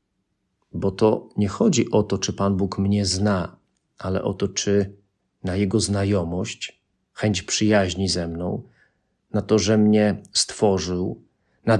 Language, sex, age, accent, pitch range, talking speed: Polish, male, 40-59, native, 95-115 Hz, 140 wpm